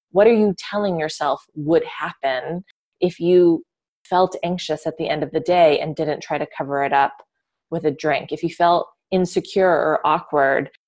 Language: English